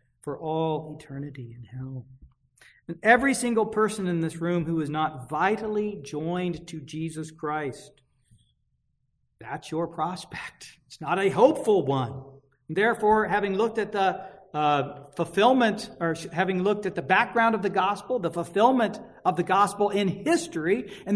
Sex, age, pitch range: male, 50-69, 160-225 Hz